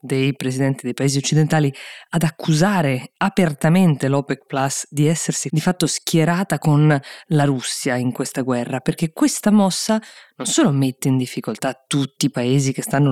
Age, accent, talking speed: 20-39, native, 155 wpm